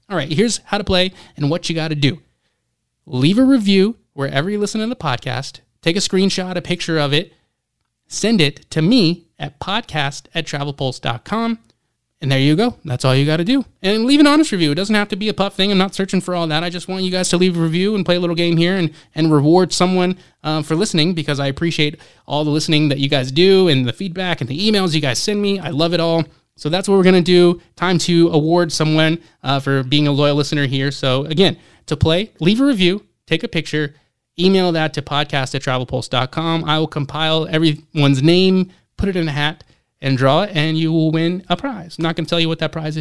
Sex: male